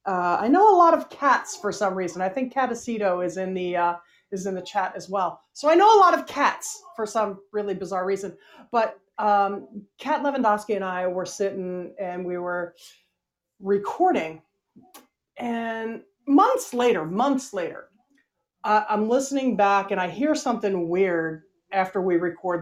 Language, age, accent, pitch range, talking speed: English, 40-59, American, 175-240 Hz, 165 wpm